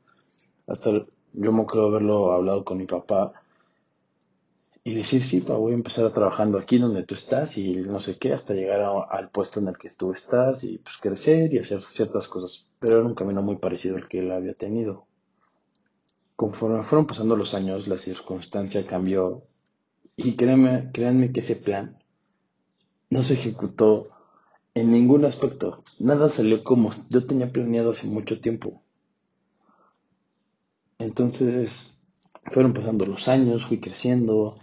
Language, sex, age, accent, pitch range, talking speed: Spanish, male, 30-49, Mexican, 100-125 Hz, 155 wpm